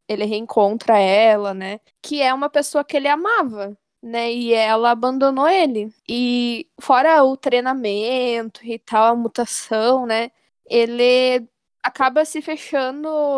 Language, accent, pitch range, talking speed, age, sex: Portuguese, Brazilian, 225-275 Hz, 130 wpm, 10-29, female